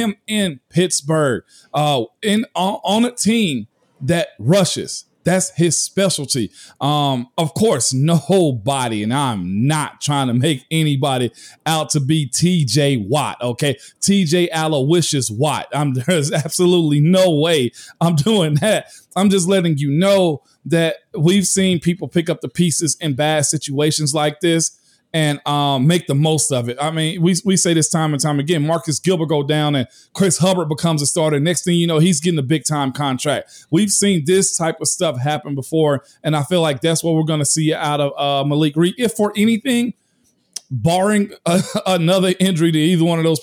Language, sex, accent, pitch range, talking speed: English, male, American, 145-175 Hz, 180 wpm